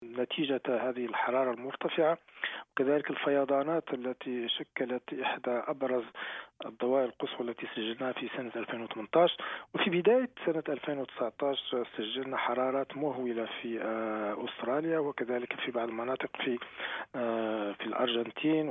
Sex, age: male, 40-59